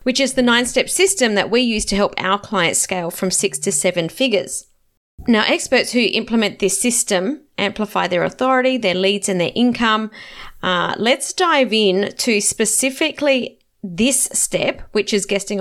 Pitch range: 195-245 Hz